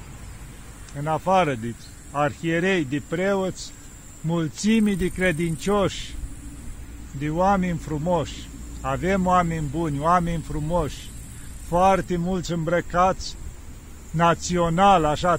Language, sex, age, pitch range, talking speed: Romanian, male, 50-69, 145-180 Hz, 85 wpm